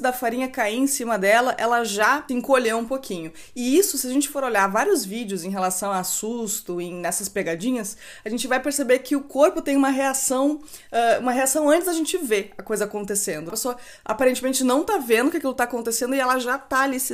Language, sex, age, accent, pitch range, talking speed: Portuguese, female, 20-39, Brazilian, 215-275 Hz, 215 wpm